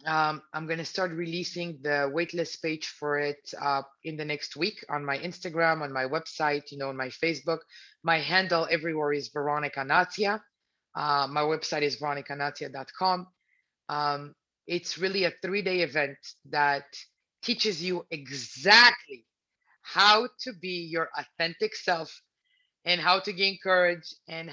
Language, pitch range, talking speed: English, 155-200 Hz, 150 wpm